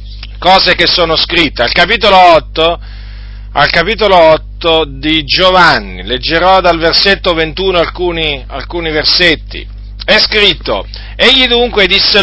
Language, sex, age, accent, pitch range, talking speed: Italian, male, 40-59, native, 135-200 Hz, 110 wpm